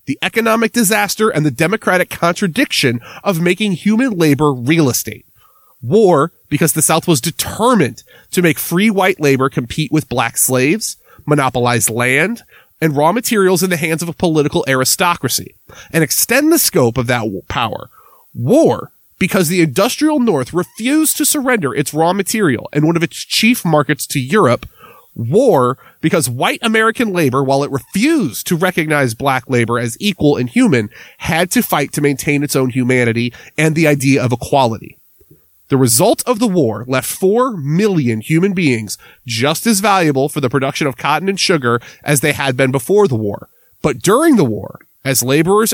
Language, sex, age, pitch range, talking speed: English, male, 30-49, 135-195 Hz, 170 wpm